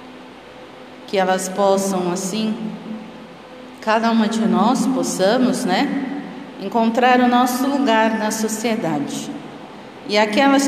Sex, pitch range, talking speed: female, 210-280 Hz, 100 wpm